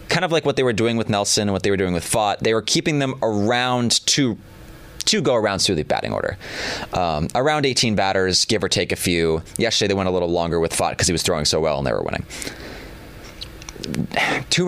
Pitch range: 90-120 Hz